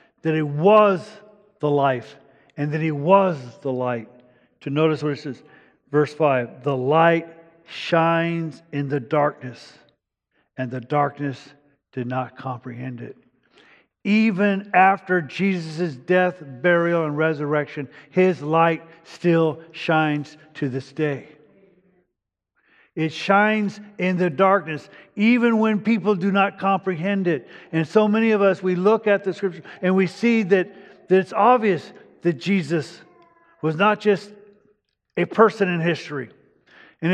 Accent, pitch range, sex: American, 150-195 Hz, male